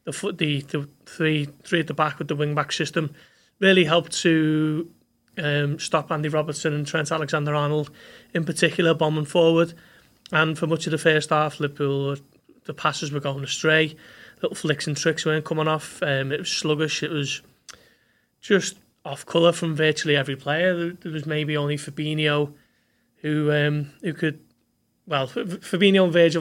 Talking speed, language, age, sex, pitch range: 170 wpm, English, 30-49, male, 150-165 Hz